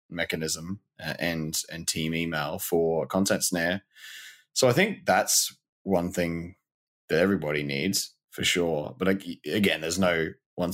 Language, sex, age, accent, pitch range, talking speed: English, male, 20-39, Australian, 85-105 Hz, 135 wpm